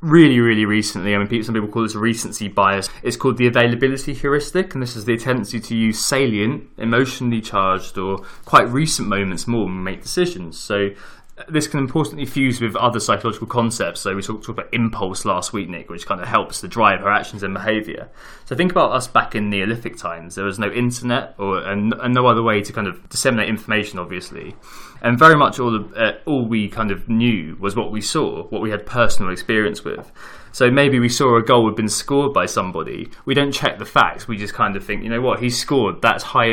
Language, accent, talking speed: English, British, 225 wpm